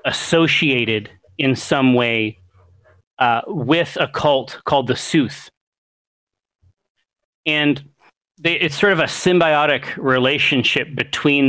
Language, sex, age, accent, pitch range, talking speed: English, male, 30-49, American, 115-150 Hz, 105 wpm